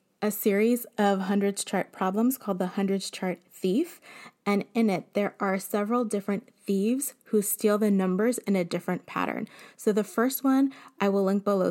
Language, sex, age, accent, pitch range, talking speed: English, female, 20-39, American, 190-225 Hz, 180 wpm